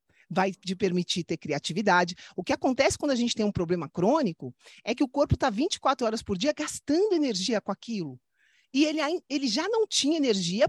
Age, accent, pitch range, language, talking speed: 40-59, Brazilian, 220-320 Hz, Portuguese, 195 wpm